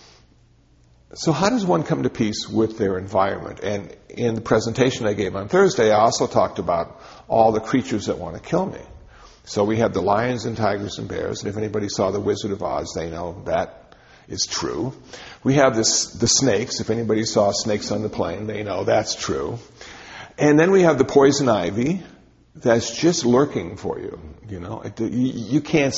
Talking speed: 195 wpm